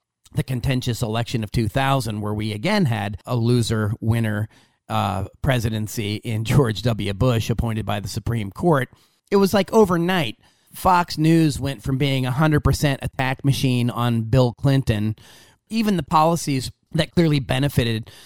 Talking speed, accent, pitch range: 145 wpm, American, 115-150 Hz